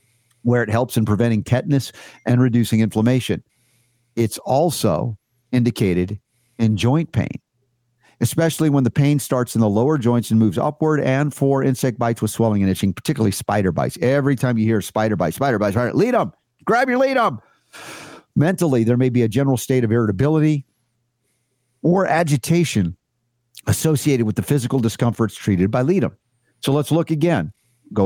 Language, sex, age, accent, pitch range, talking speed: English, male, 50-69, American, 110-140 Hz, 165 wpm